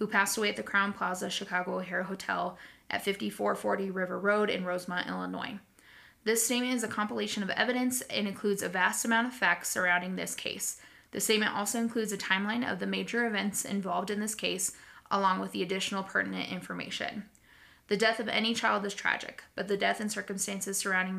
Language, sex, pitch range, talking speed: English, female, 190-220 Hz, 190 wpm